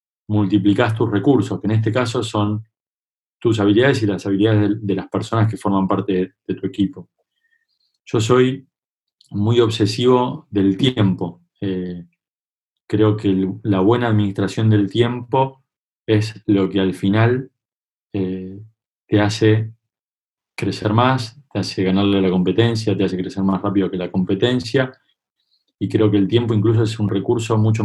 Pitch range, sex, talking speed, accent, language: 95-120 Hz, male, 150 wpm, Argentinian, Spanish